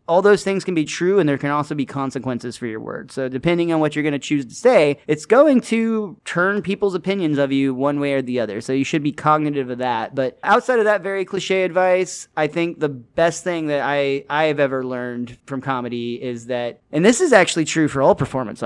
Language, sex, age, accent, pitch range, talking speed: English, male, 30-49, American, 130-160 Hz, 240 wpm